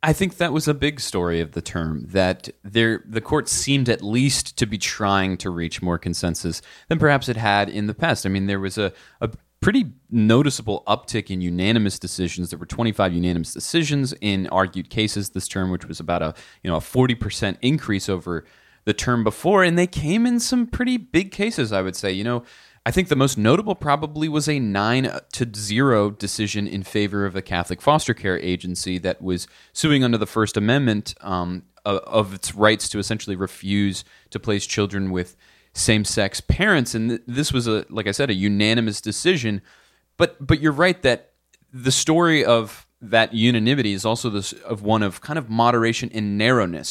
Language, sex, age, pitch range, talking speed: English, male, 30-49, 95-130 Hz, 195 wpm